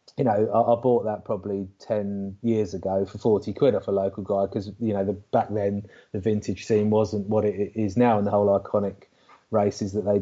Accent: British